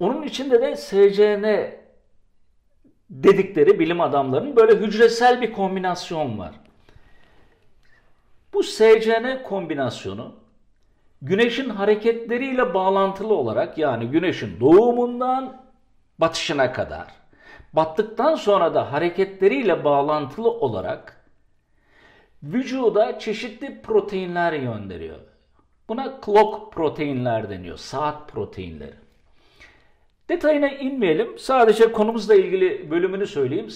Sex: male